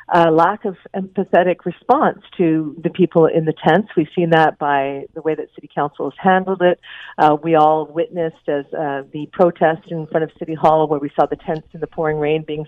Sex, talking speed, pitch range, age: female, 220 wpm, 155-180 Hz, 50-69